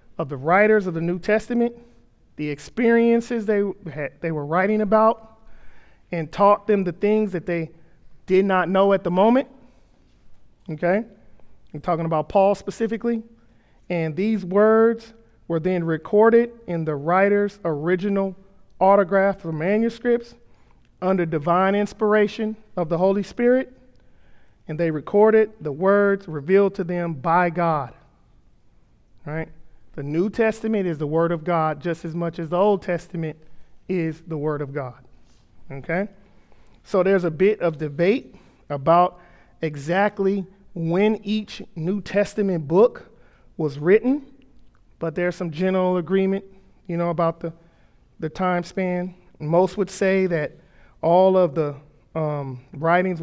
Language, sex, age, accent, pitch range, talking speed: English, male, 40-59, American, 165-205 Hz, 135 wpm